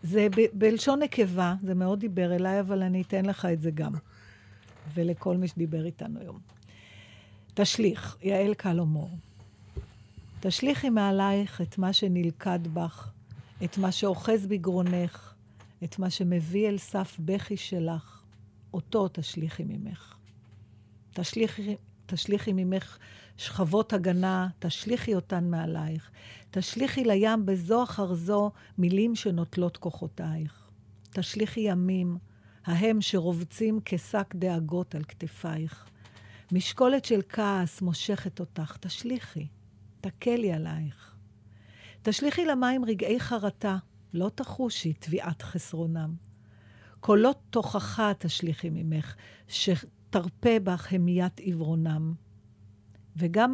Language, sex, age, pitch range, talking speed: Hebrew, female, 50-69, 140-200 Hz, 105 wpm